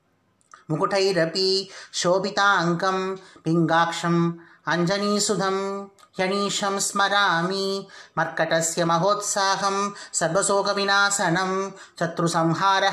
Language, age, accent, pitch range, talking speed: English, 30-49, Indian, 180-195 Hz, 65 wpm